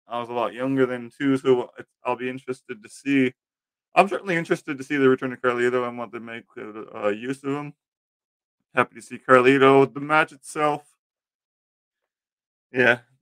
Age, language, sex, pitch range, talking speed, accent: 20-39, English, male, 110-135 Hz, 175 wpm, American